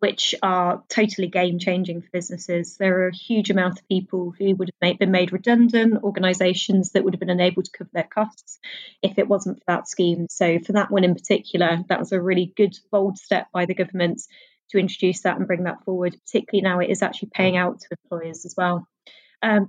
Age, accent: 20-39, British